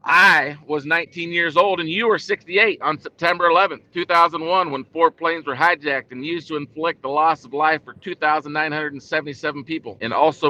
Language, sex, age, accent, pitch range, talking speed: English, male, 50-69, American, 145-175 Hz, 175 wpm